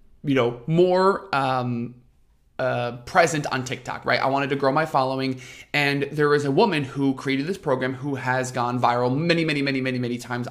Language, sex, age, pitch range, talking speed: English, male, 20-39, 130-170 Hz, 195 wpm